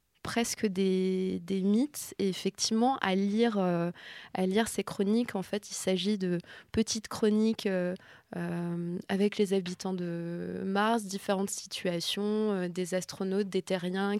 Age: 20-39